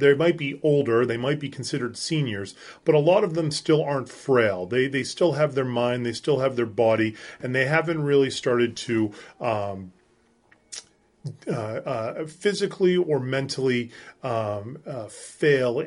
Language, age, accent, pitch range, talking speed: English, 30-49, American, 115-150 Hz, 165 wpm